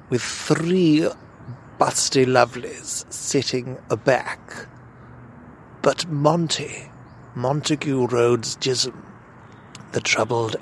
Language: English